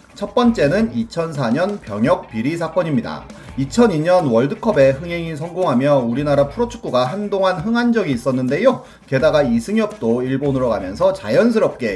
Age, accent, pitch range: 30-49, native, 125-210 Hz